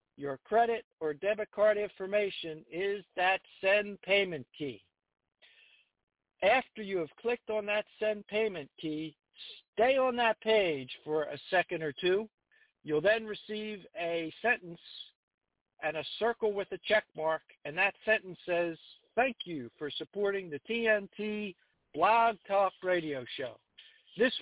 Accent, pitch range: American, 170-230 Hz